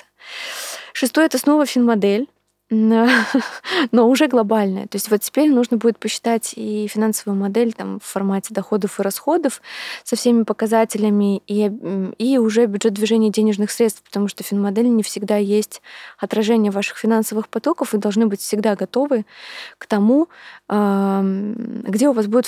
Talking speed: 145 wpm